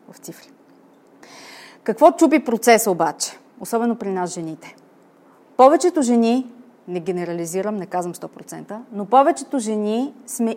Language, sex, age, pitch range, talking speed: Bulgarian, female, 30-49, 195-245 Hz, 120 wpm